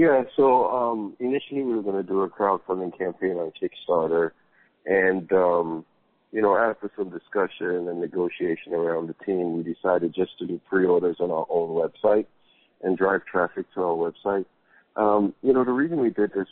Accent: American